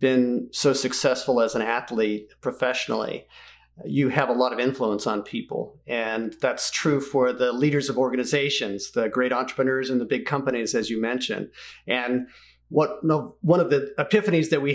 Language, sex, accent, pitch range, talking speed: English, male, American, 125-145 Hz, 175 wpm